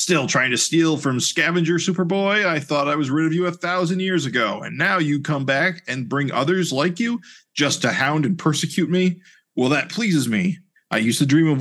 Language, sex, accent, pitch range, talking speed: English, male, American, 125-180 Hz, 220 wpm